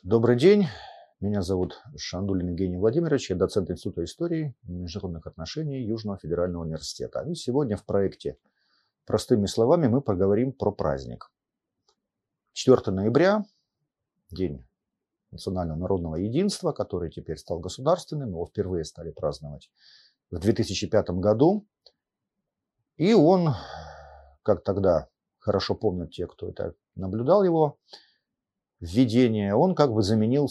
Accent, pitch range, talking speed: native, 90-145 Hz, 120 wpm